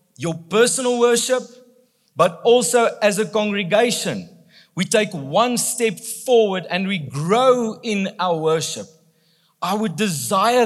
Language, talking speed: English, 125 wpm